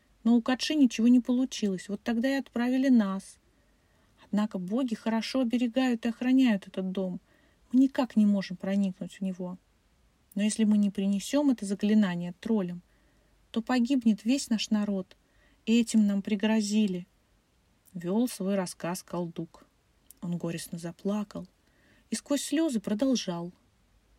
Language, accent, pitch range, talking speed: Russian, native, 190-235 Hz, 135 wpm